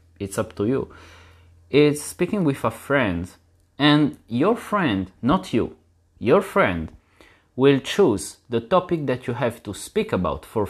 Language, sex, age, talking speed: English, male, 30-49, 150 wpm